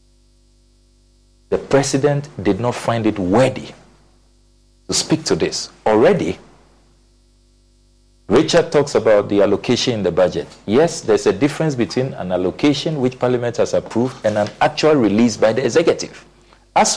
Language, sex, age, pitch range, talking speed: English, male, 50-69, 90-145 Hz, 140 wpm